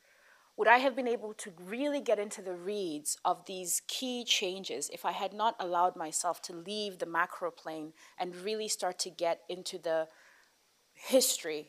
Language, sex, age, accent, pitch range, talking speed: English, female, 30-49, South African, 175-220 Hz, 175 wpm